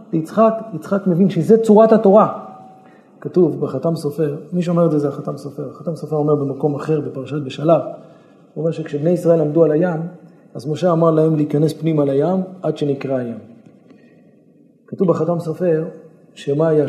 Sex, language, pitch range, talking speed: male, Hebrew, 145-190 Hz, 160 wpm